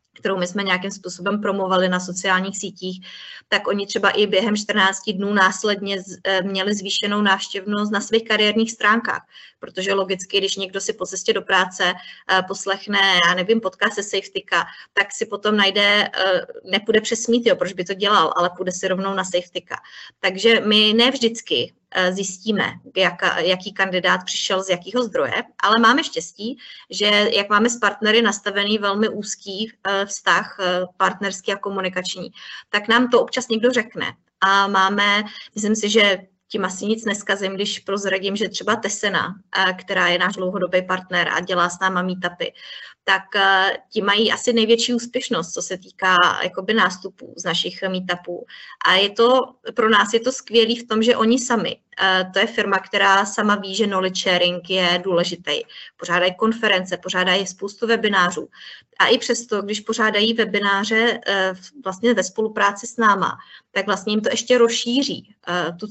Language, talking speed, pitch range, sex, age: Czech, 160 wpm, 190-220 Hz, female, 20-39